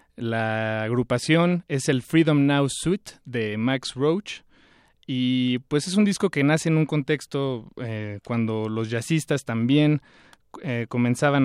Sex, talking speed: male, 140 wpm